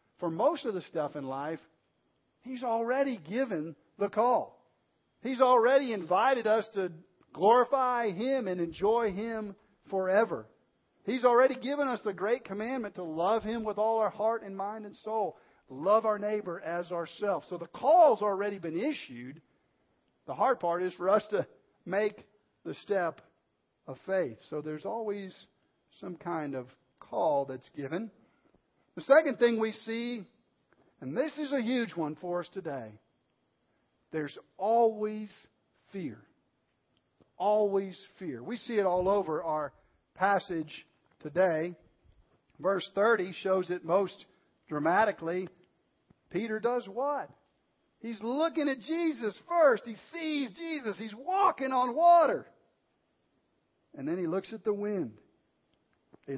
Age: 50-69